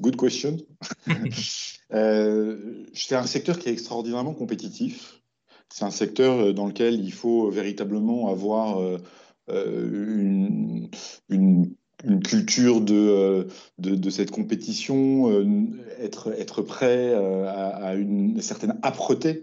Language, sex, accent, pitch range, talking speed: French, male, French, 90-125 Hz, 105 wpm